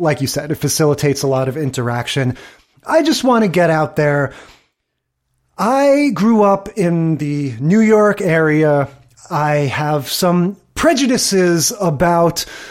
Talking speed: 135 wpm